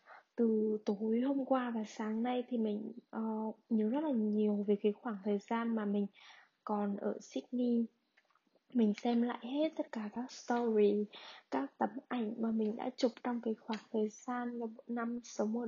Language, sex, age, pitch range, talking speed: Vietnamese, female, 10-29, 215-245 Hz, 180 wpm